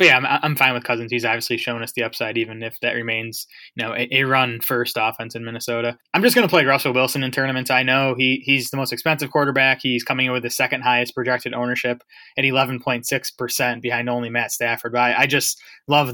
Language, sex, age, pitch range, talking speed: English, male, 20-39, 120-140 Hz, 240 wpm